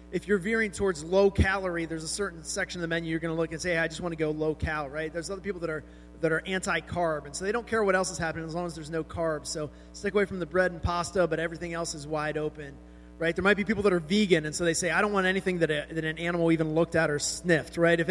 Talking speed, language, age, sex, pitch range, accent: 305 wpm, English, 30-49, male, 155-185 Hz, American